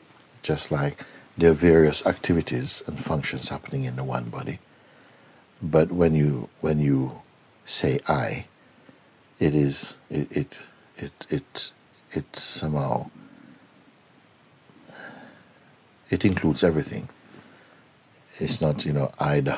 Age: 60-79